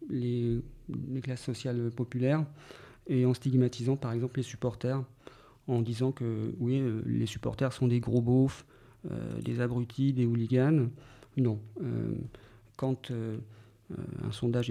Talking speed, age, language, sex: 135 wpm, 40-59, French, male